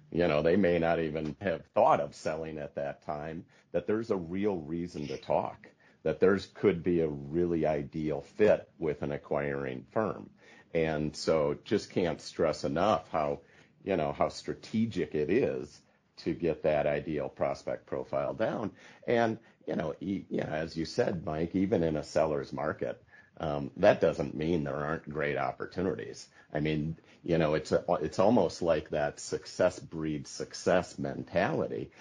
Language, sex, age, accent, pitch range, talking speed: English, male, 50-69, American, 75-85 Hz, 165 wpm